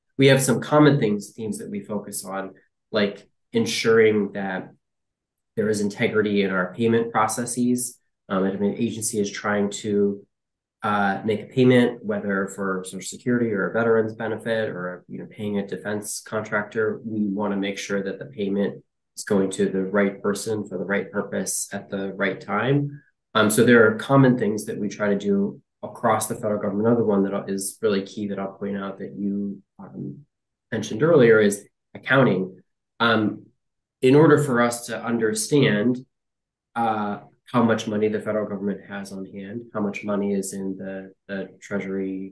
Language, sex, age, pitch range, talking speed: English, male, 20-39, 95-115 Hz, 180 wpm